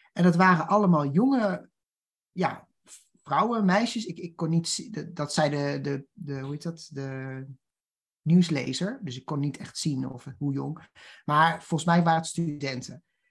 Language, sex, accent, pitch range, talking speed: Dutch, male, Dutch, 150-205 Hz, 165 wpm